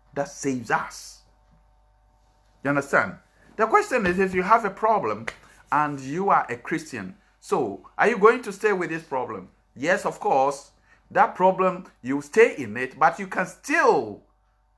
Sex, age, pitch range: male, 50-69, 155-220 Hz